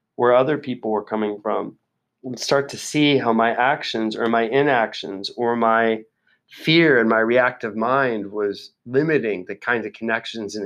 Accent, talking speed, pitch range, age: American, 170 wpm, 105-130 Hz, 30-49